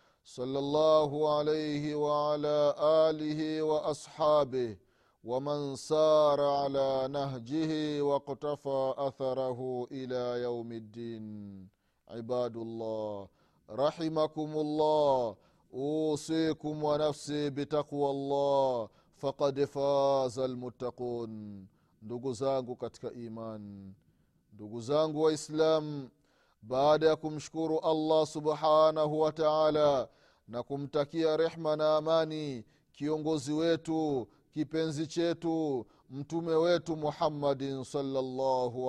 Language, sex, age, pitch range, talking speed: Swahili, male, 30-49, 115-150 Hz, 75 wpm